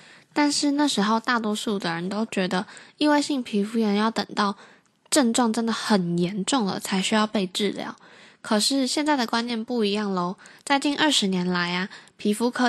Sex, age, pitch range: female, 10-29, 185-235 Hz